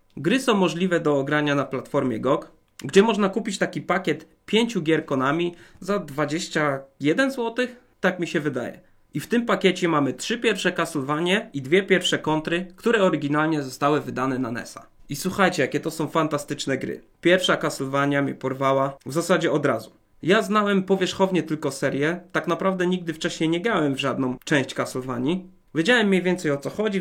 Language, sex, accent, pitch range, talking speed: Polish, male, native, 140-180 Hz, 170 wpm